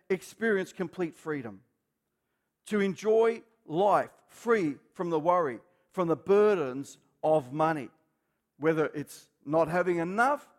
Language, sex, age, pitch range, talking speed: English, male, 50-69, 150-195 Hz, 115 wpm